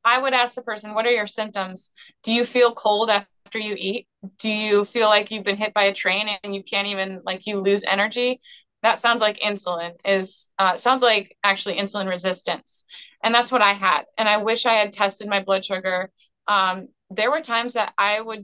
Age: 20-39